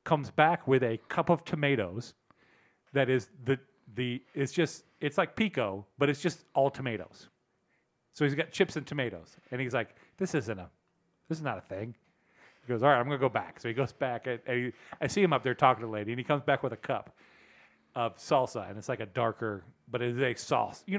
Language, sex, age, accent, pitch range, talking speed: English, male, 40-59, American, 120-160 Hz, 235 wpm